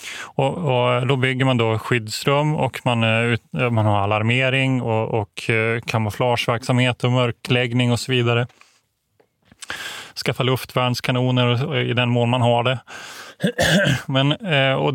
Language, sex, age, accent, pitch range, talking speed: Swedish, male, 20-39, native, 120-140 Hz, 115 wpm